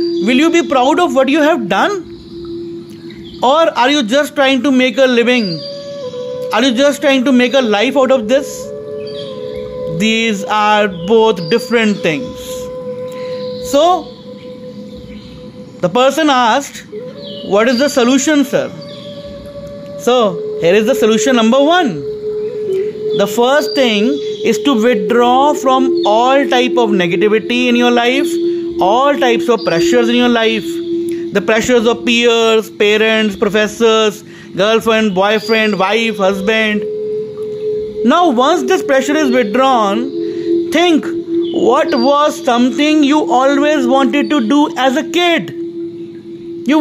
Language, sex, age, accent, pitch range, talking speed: English, male, 30-49, Indian, 220-310 Hz, 130 wpm